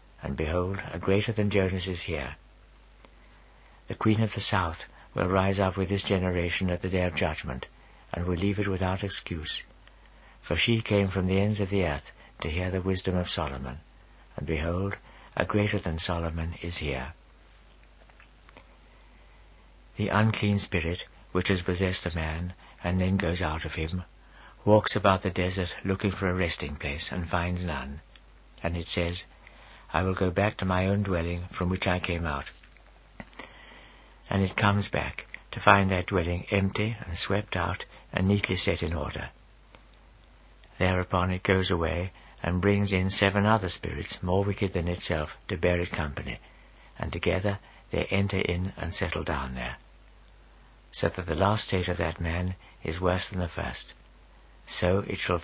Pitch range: 85-100 Hz